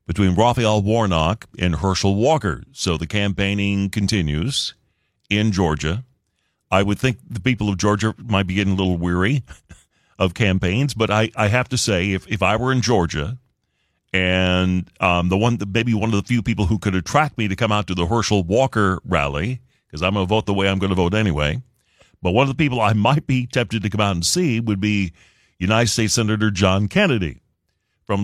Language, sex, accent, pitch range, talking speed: English, male, American, 95-125 Hz, 200 wpm